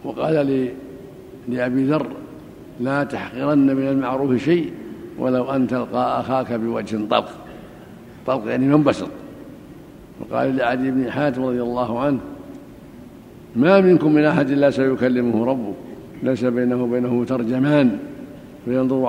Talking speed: 115 wpm